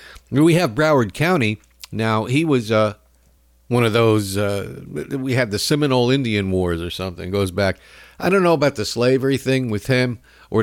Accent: American